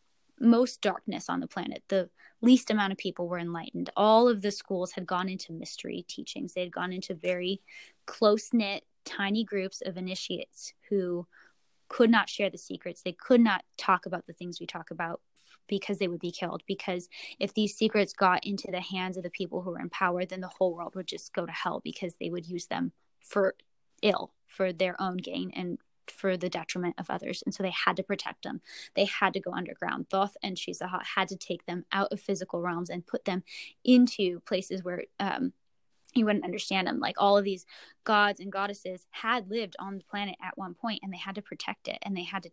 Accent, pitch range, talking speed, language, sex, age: American, 180-205 Hz, 215 wpm, English, female, 10-29